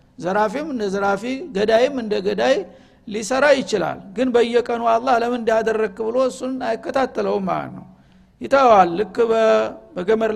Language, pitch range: Amharic, 200-235 Hz